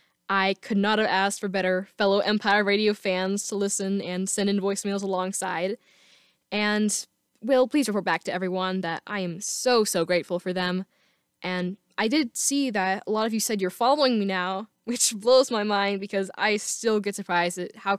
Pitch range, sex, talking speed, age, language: 190-220 Hz, female, 195 wpm, 10-29, English